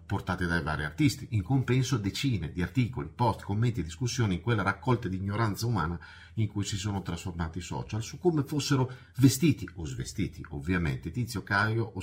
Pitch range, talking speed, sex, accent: 95-125 Hz, 180 wpm, male, native